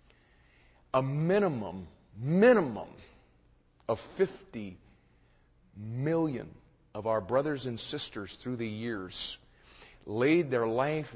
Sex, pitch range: male, 110-160 Hz